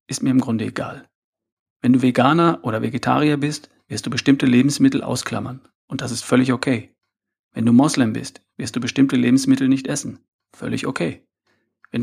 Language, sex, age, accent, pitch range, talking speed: German, male, 40-59, German, 120-140 Hz, 170 wpm